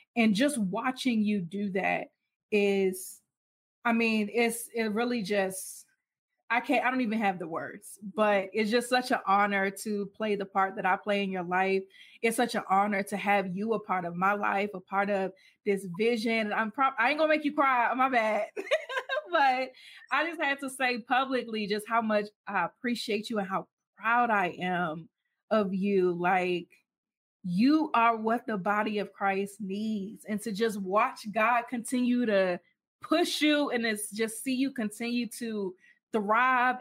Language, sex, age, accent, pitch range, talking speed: English, female, 20-39, American, 195-240 Hz, 180 wpm